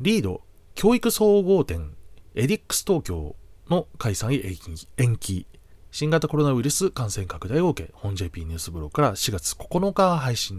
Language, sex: Japanese, male